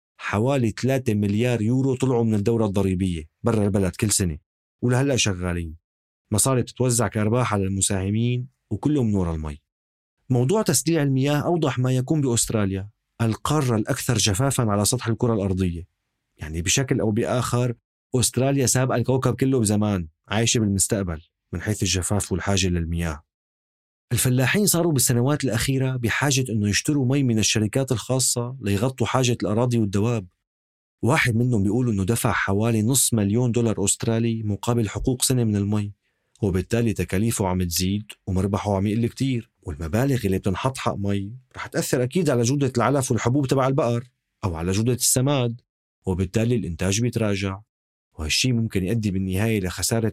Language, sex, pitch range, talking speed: Arabic, male, 100-125 Hz, 140 wpm